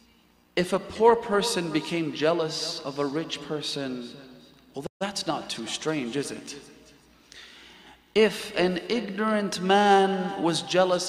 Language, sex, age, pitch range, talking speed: English, male, 30-49, 155-210 Hz, 125 wpm